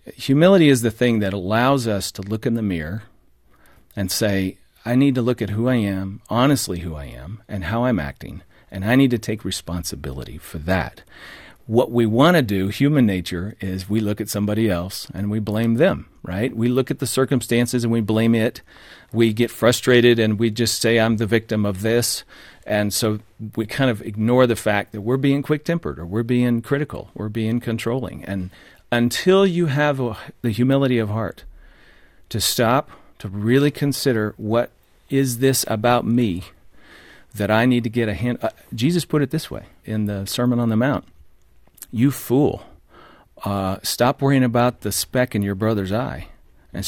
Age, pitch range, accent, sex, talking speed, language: 40-59, 100-125 Hz, American, male, 190 wpm, English